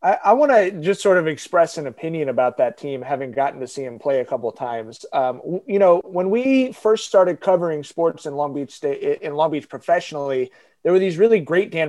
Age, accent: 30-49, American